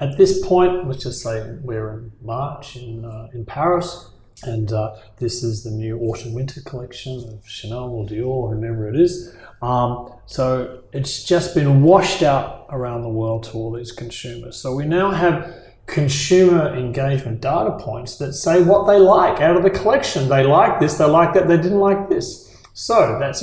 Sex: male